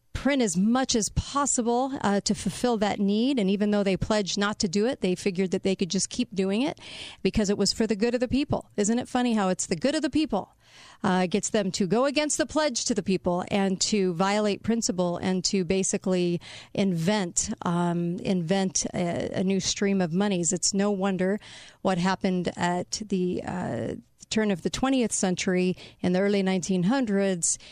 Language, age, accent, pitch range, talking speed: English, 40-59, American, 185-230 Hz, 195 wpm